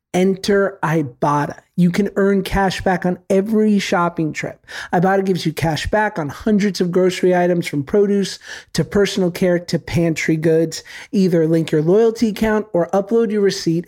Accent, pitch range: American, 165-200 Hz